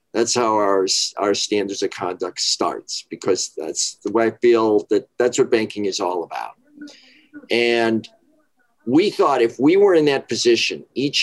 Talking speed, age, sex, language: 165 wpm, 50-69, male, English